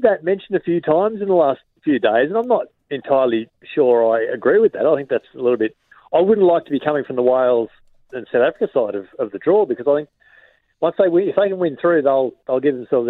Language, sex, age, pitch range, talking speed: English, male, 40-59, 115-160 Hz, 255 wpm